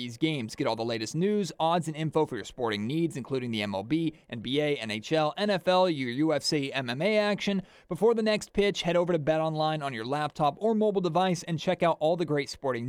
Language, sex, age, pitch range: English, male, 30-49, 145-180 Hz